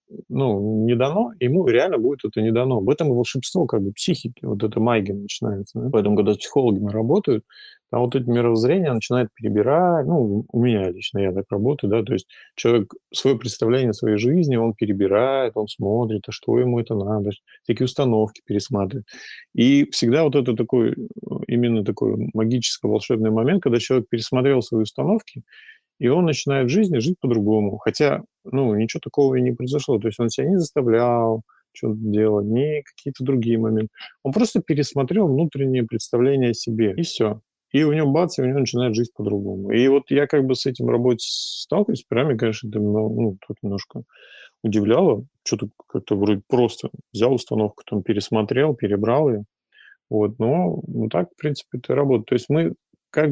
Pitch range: 110-135 Hz